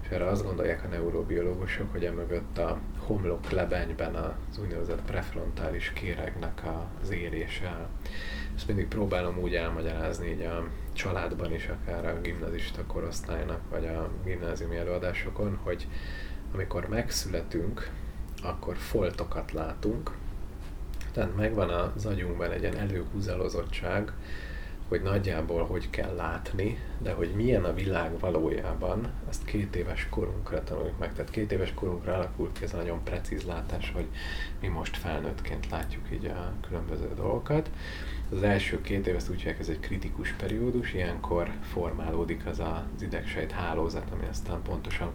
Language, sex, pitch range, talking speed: Hungarian, male, 80-95 Hz, 135 wpm